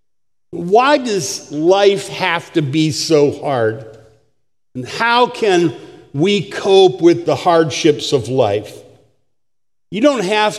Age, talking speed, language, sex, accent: 50-69, 120 wpm, English, male, American